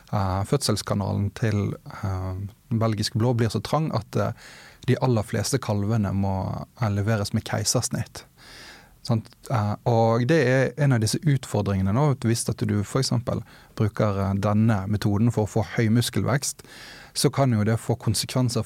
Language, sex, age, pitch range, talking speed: English, male, 30-49, 105-125 Hz, 135 wpm